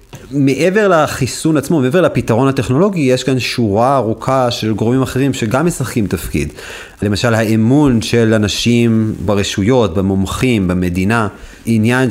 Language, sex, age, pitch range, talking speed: Hebrew, male, 30-49, 110-135 Hz, 120 wpm